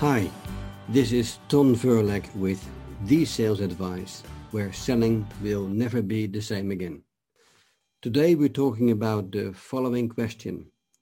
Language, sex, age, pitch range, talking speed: English, male, 50-69, 105-125 Hz, 130 wpm